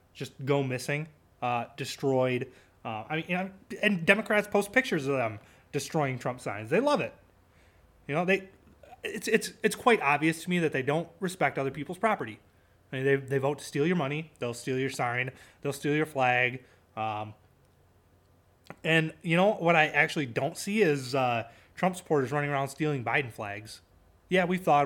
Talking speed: 185 wpm